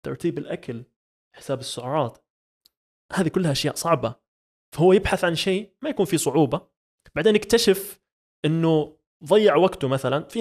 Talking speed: 135 wpm